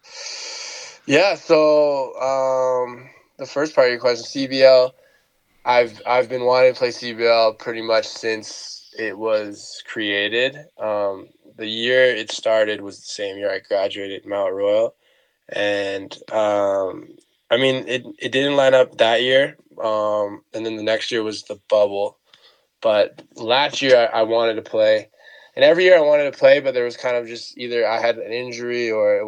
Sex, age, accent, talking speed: male, 20-39, American, 170 wpm